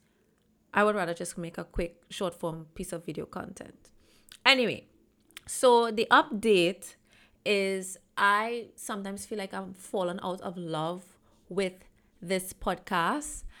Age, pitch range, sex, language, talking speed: 20-39, 170-205 Hz, female, English, 135 wpm